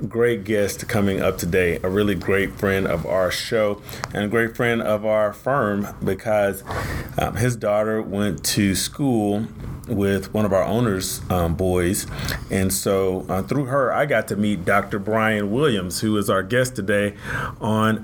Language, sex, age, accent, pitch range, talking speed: English, male, 30-49, American, 95-115 Hz, 170 wpm